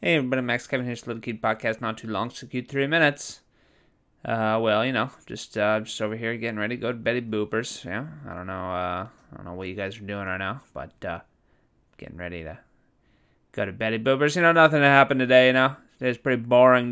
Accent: American